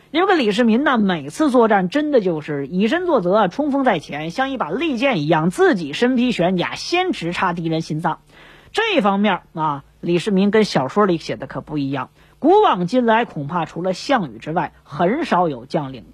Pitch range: 175-270 Hz